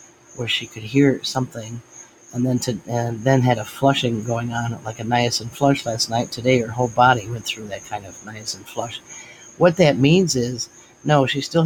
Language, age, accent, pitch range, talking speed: English, 50-69, American, 115-130 Hz, 200 wpm